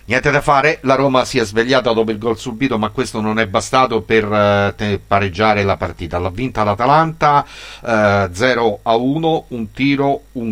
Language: Italian